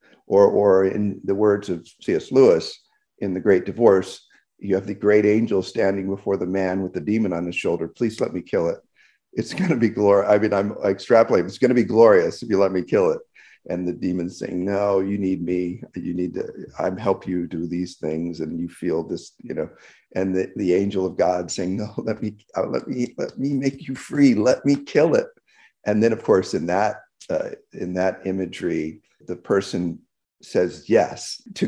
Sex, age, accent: male, 50-69, American